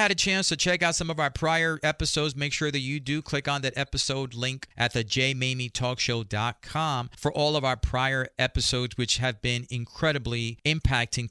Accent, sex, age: American, male, 40-59